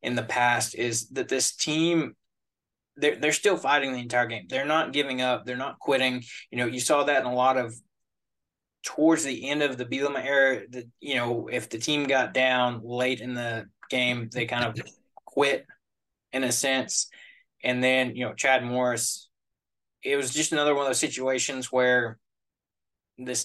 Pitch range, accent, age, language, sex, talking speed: 120-140 Hz, American, 20-39, English, male, 185 wpm